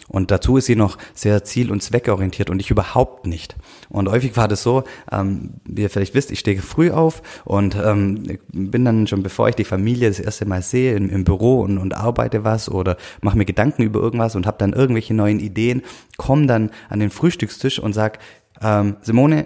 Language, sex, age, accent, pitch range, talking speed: German, male, 30-49, German, 95-115 Hz, 210 wpm